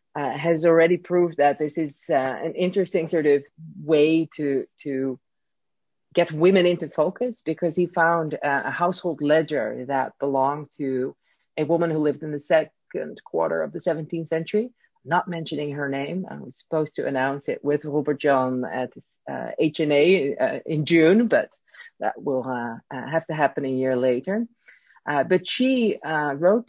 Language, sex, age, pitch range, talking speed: English, female, 40-59, 145-195 Hz, 170 wpm